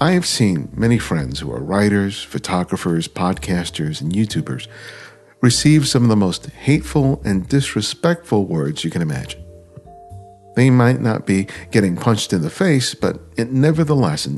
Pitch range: 90-130 Hz